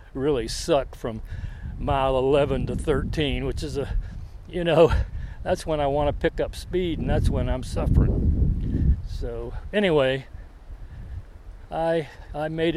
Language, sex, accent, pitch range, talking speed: English, male, American, 95-140 Hz, 140 wpm